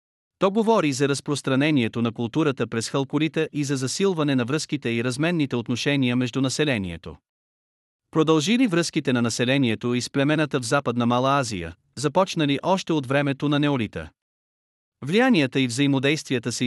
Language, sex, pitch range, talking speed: Bulgarian, male, 120-155 Hz, 135 wpm